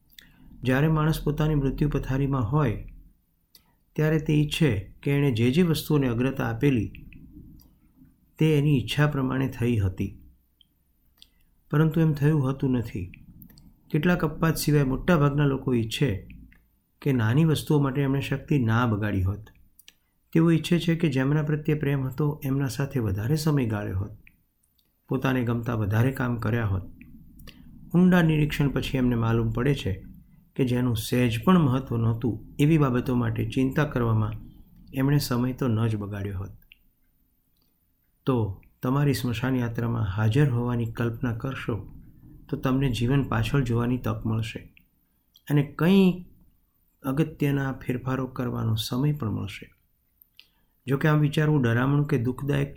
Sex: male